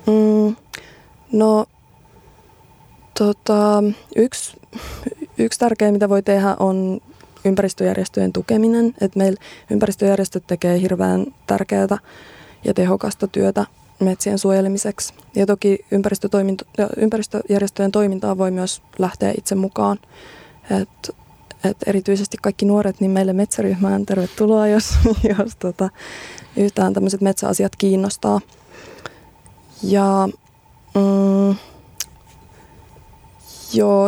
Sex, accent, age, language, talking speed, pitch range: female, native, 20-39, Finnish, 90 wpm, 190-210 Hz